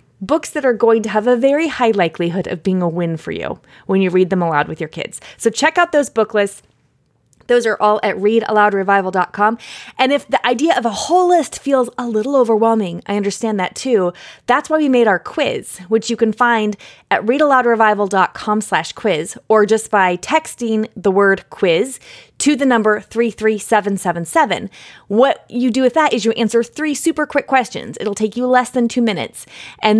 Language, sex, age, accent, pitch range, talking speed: English, female, 20-39, American, 195-245 Hz, 190 wpm